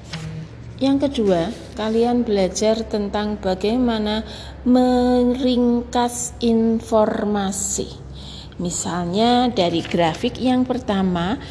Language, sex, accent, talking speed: Indonesian, female, native, 70 wpm